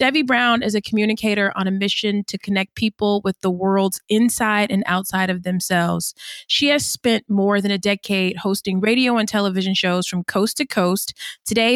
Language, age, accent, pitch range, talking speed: English, 20-39, American, 190-230 Hz, 185 wpm